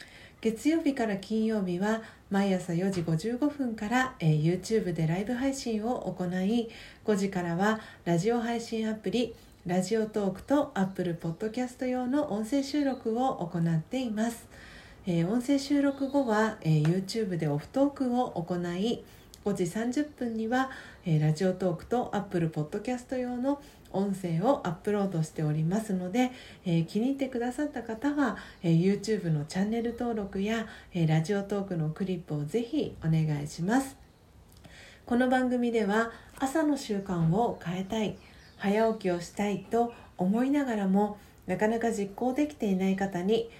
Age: 40-59